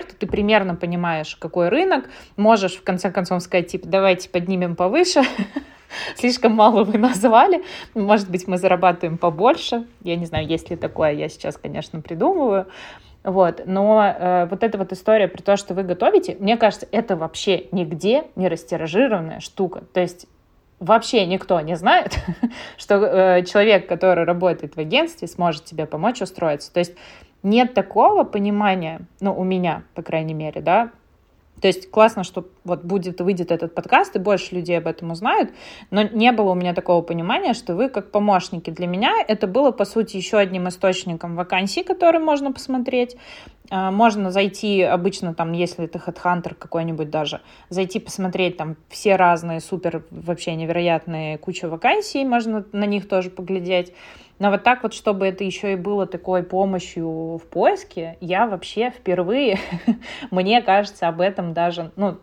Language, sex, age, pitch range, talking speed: Russian, female, 20-39, 175-215 Hz, 160 wpm